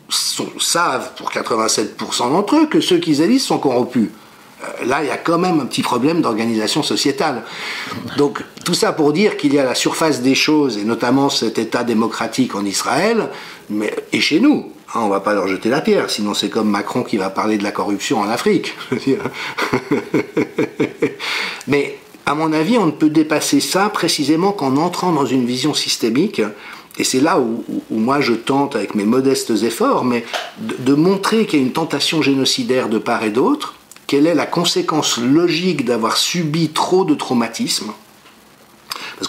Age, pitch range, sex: 50-69, 110-155 Hz, male